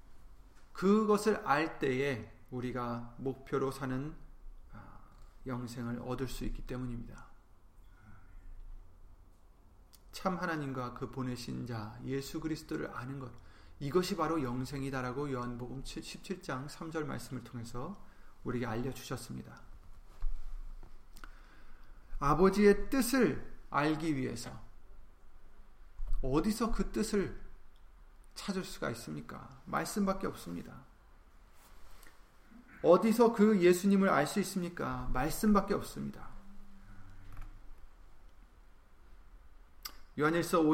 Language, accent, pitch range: Korean, native, 110-180 Hz